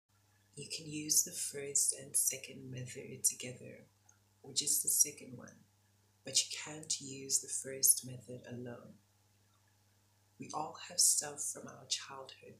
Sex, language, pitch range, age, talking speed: female, English, 105-135 Hz, 30-49, 140 wpm